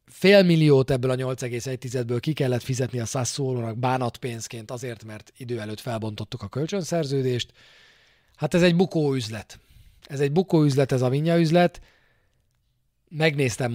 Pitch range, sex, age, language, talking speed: 115-150 Hz, male, 40-59, Hungarian, 135 wpm